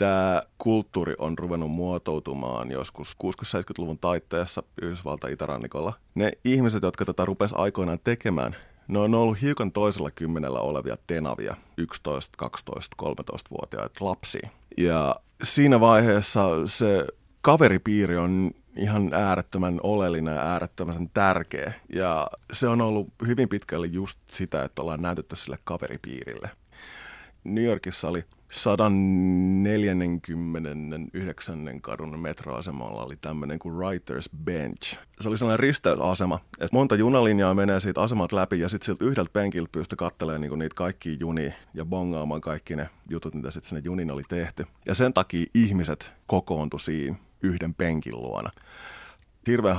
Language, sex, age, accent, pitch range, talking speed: Finnish, male, 30-49, native, 80-100 Hz, 130 wpm